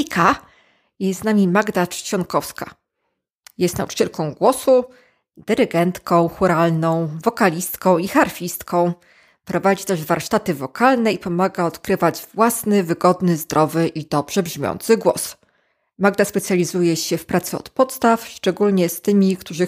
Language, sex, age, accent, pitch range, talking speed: Polish, female, 20-39, native, 175-205 Hz, 115 wpm